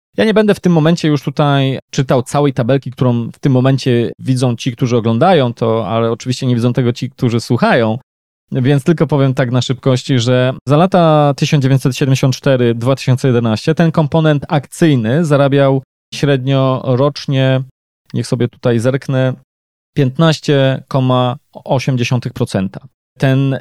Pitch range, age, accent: 125-150 Hz, 20-39, native